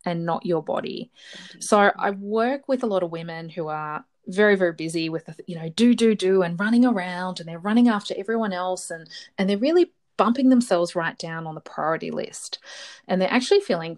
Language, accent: English, Australian